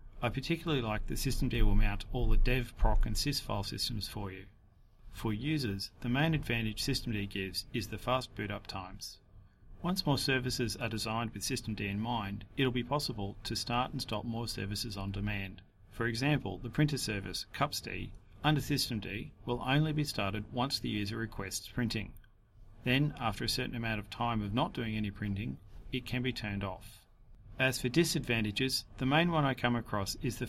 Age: 40-59